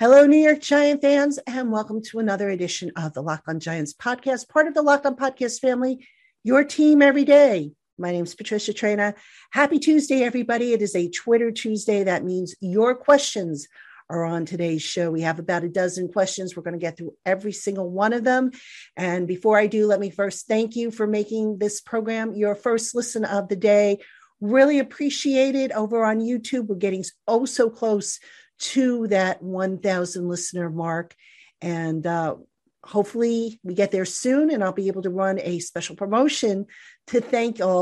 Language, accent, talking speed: English, American, 185 wpm